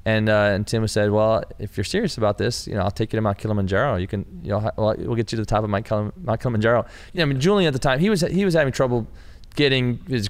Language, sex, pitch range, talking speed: English, male, 100-120 Hz, 290 wpm